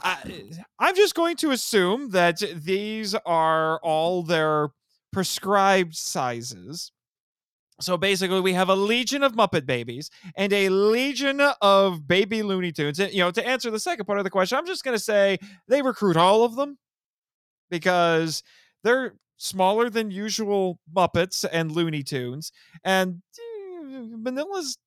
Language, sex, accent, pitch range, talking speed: English, male, American, 170-255 Hz, 145 wpm